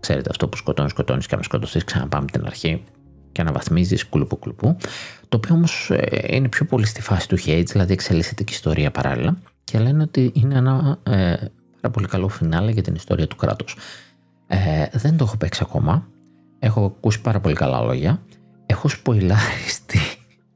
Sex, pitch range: male, 75-110 Hz